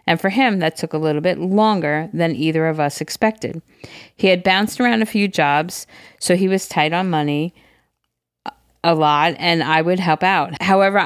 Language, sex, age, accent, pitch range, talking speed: English, female, 40-59, American, 150-180 Hz, 190 wpm